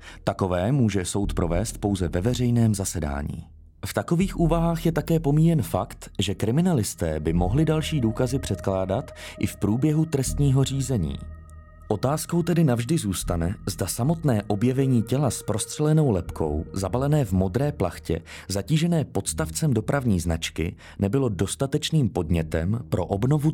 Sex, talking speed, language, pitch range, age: male, 130 wpm, Czech, 85-125 Hz, 30-49